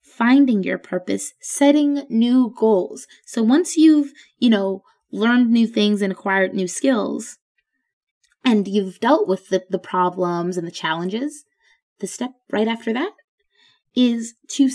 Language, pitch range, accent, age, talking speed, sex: English, 210-265 Hz, American, 20-39, 140 wpm, female